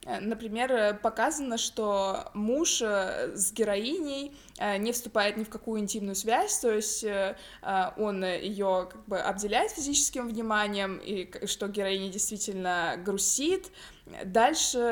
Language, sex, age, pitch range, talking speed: Russian, female, 20-39, 200-235 Hz, 115 wpm